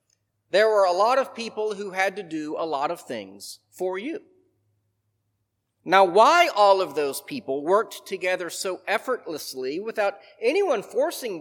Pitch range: 180-250 Hz